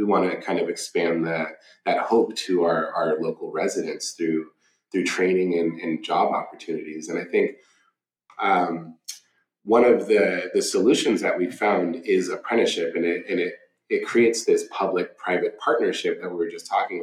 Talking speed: 175 wpm